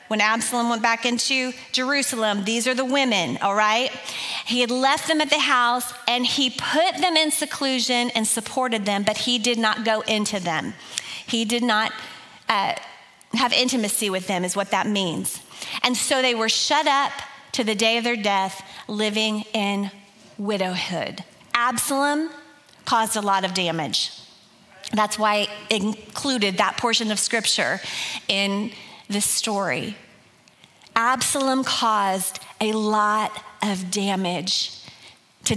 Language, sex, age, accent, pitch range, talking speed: English, female, 30-49, American, 205-240 Hz, 145 wpm